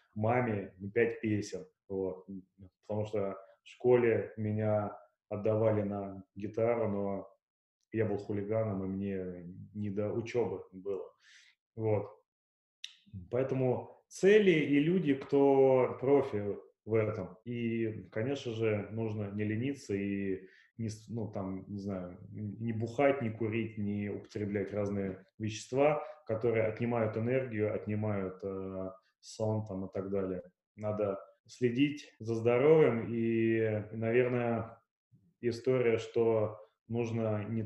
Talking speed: 110 wpm